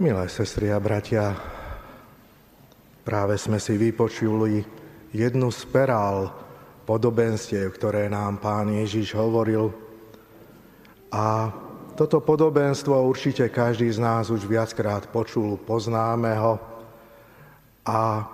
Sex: male